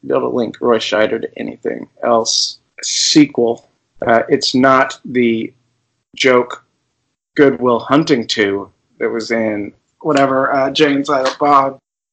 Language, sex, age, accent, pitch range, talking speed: English, male, 30-49, American, 120-145 Hz, 135 wpm